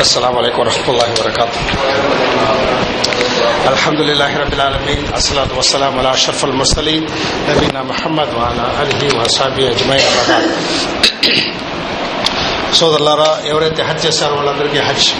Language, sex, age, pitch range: Telugu, male, 50-69, 135-155 Hz